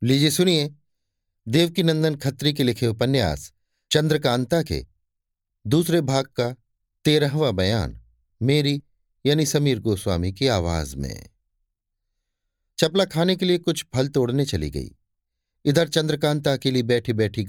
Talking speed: 125 wpm